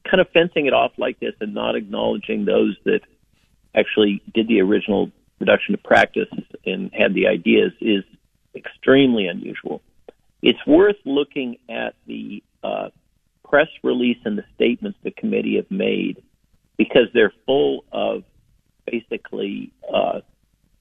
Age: 50-69